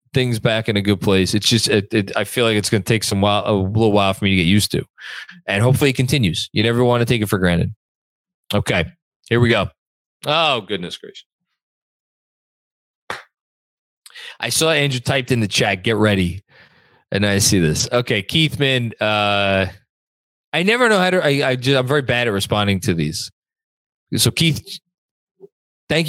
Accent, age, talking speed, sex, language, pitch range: American, 20-39, 185 wpm, male, English, 100-135 Hz